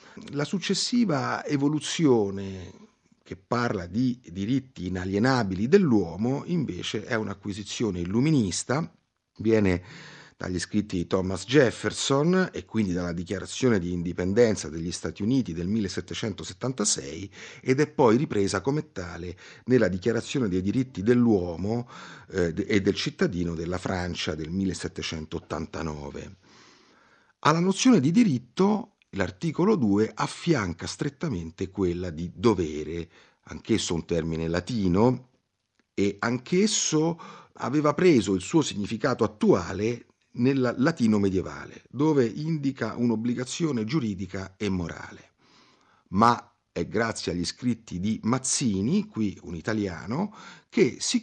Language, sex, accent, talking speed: Italian, male, native, 110 wpm